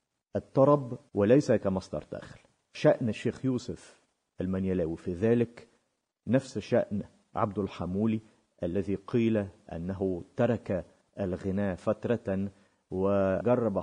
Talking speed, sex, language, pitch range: 90 wpm, male, Malay, 95-120 Hz